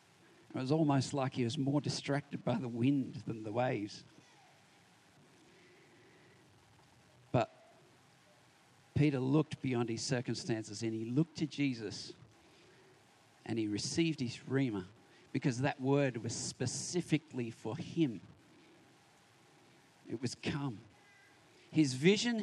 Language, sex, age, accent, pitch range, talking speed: English, male, 50-69, Australian, 130-170 Hz, 110 wpm